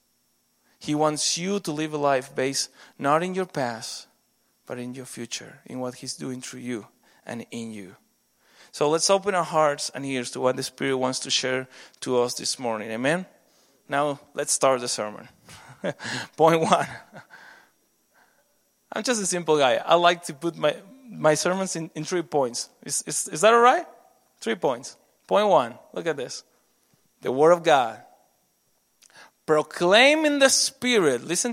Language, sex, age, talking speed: English, male, 30-49, 170 wpm